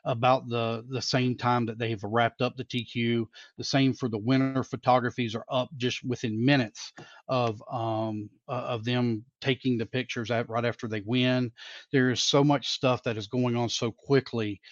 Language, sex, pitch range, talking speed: English, male, 120-135 Hz, 190 wpm